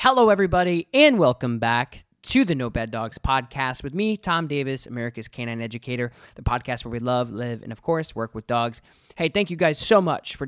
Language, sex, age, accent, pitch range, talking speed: English, male, 20-39, American, 110-135 Hz, 210 wpm